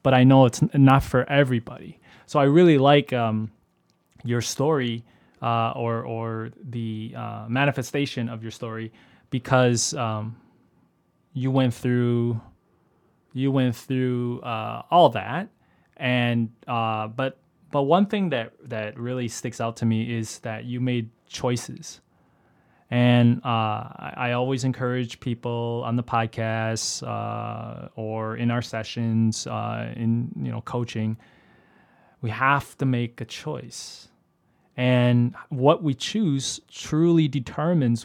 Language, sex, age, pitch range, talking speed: English, male, 20-39, 115-135 Hz, 130 wpm